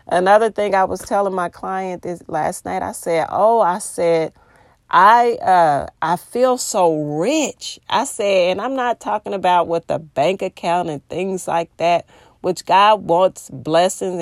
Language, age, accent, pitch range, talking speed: English, 40-59, American, 180-230 Hz, 170 wpm